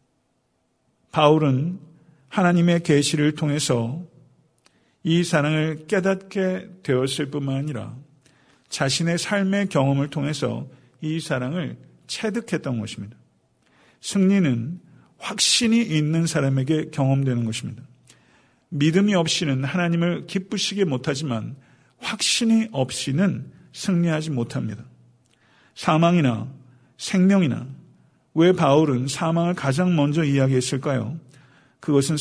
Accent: native